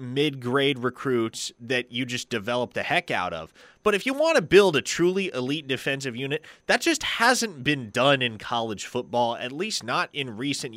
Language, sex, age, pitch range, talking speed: English, male, 30-49, 125-185 Hz, 190 wpm